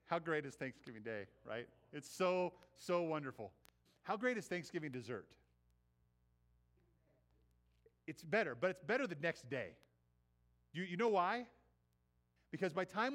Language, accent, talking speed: English, American, 140 wpm